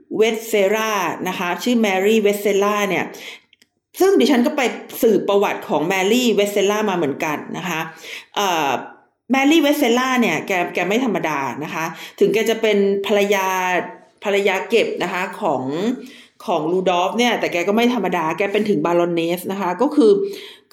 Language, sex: Thai, female